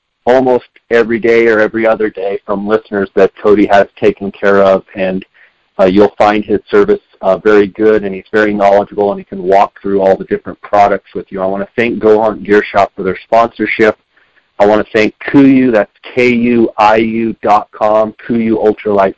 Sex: male